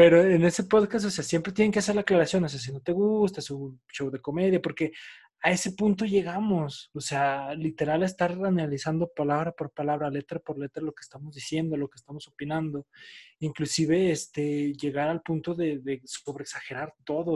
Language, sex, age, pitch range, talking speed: Spanish, male, 20-39, 135-175 Hz, 195 wpm